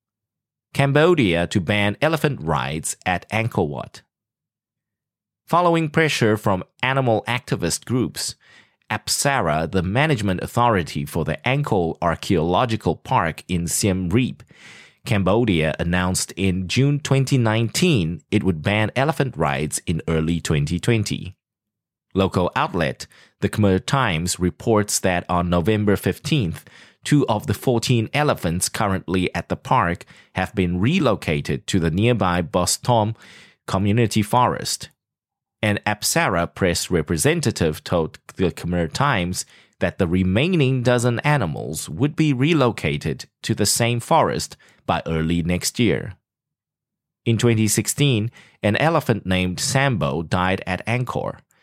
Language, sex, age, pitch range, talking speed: English, male, 30-49, 90-130 Hz, 115 wpm